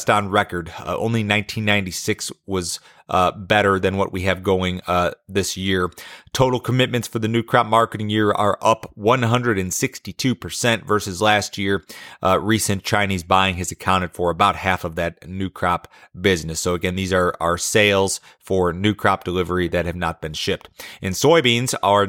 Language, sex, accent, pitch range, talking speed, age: English, male, American, 90-105 Hz, 170 wpm, 30-49